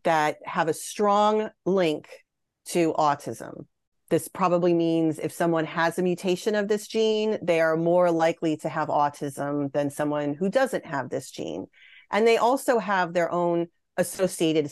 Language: English